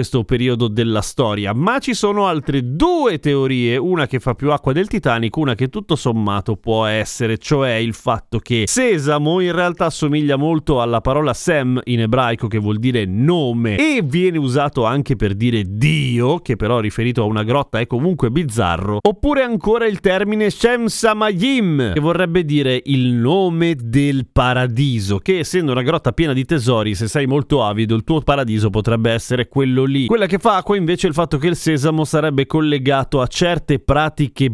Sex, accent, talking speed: male, native, 180 wpm